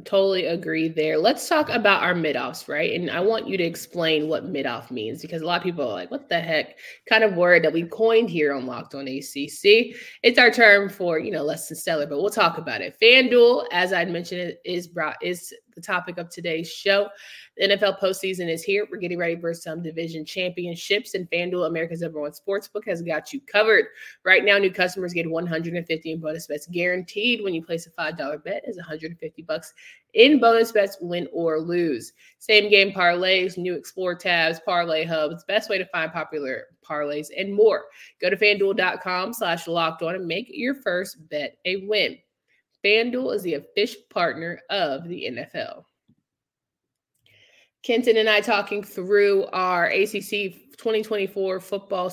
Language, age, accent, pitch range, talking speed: English, 20-39, American, 165-205 Hz, 180 wpm